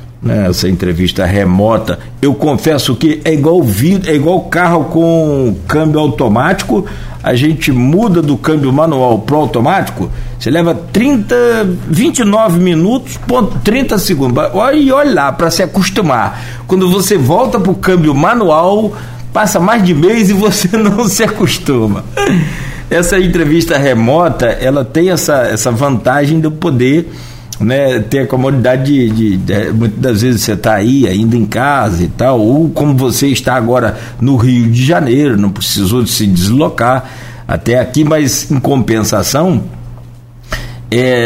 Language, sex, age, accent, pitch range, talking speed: Portuguese, male, 60-79, Brazilian, 120-160 Hz, 145 wpm